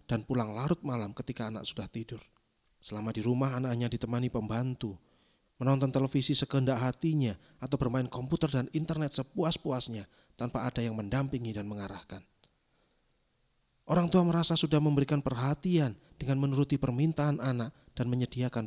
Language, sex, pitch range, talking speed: Indonesian, male, 115-150 Hz, 135 wpm